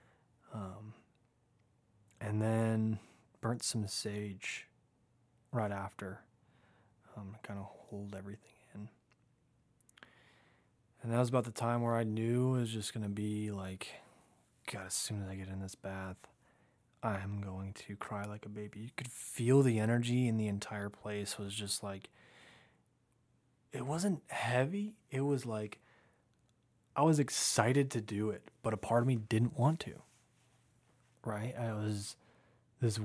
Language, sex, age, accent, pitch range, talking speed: English, male, 20-39, American, 105-120 Hz, 150 wpm